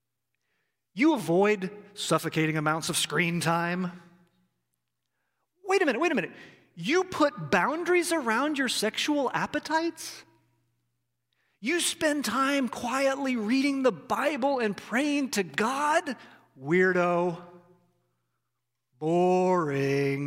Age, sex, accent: 40-59, male, American